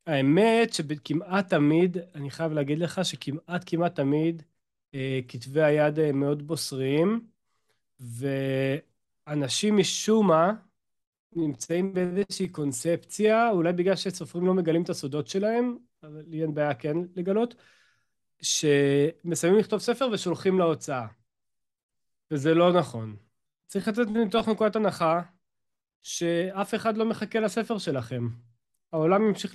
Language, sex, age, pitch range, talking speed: Hebrew, male, 30-49, 150-195 Hz, 115 wpm